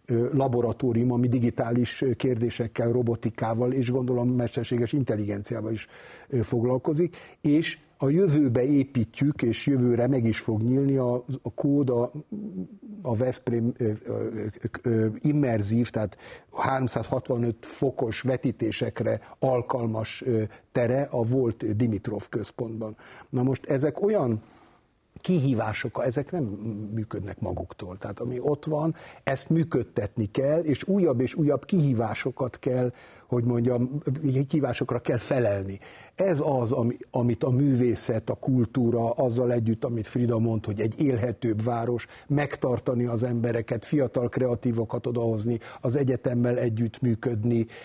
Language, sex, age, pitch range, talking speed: Hungarian, male, 50-69, 115-135 Hz, 125 wpm